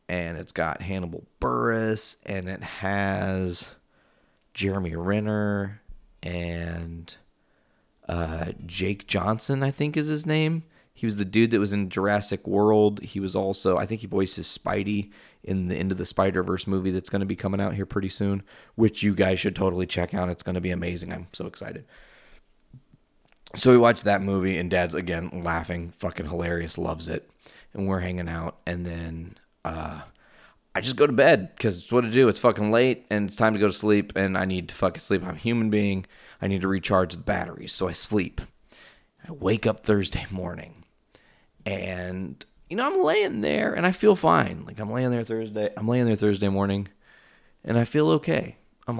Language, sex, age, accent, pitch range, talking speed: English, male, 30-49, American, 90-105 Hz, 190 wpm